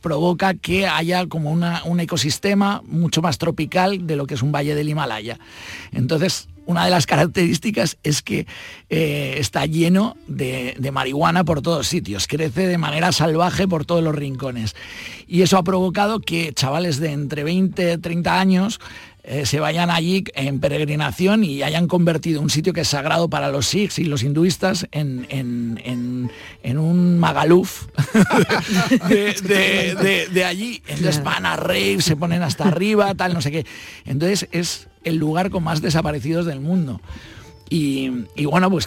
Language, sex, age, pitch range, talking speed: Spanish, male, 50-69, 135-180 Hz, 160 wpm